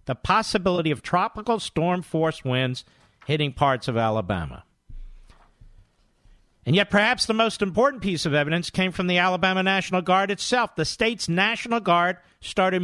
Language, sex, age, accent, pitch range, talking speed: English, male, 50-69, American, 160-215 Hz, 145 wpm